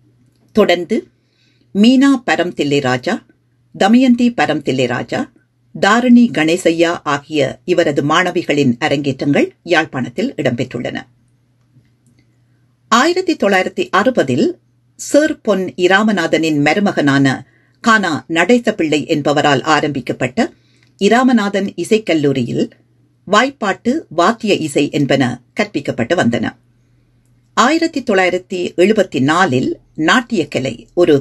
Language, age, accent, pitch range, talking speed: Tamil, 50-69, native, 135-215 Hz, 75 wpm